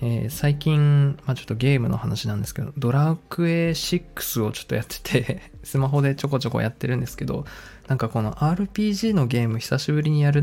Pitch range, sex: 115-145 Hz, male